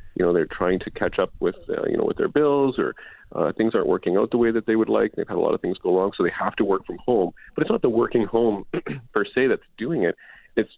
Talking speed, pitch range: 295 wpm, 100-160 Hz